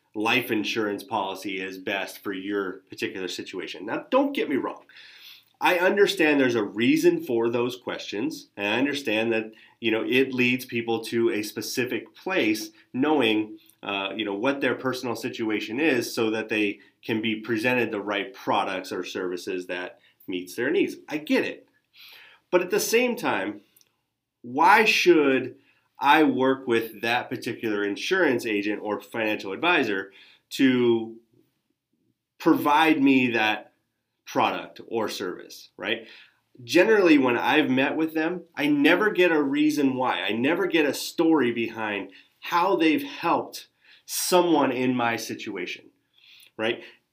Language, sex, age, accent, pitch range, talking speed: English, male, 30-49, American, 110-170 Hz, 145 wpm